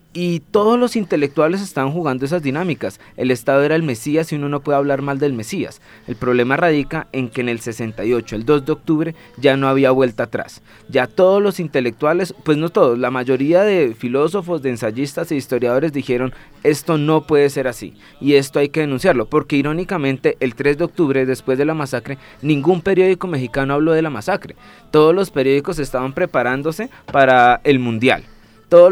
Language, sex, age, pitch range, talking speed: Spanish, male, 20-39, 130-160 Hz, 185 wpm